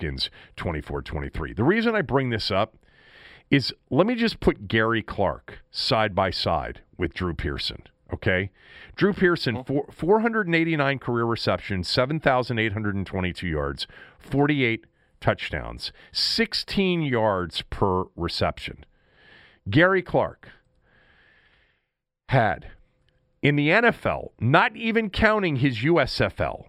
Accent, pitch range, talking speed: American, 105-165 Hz, 105 wpm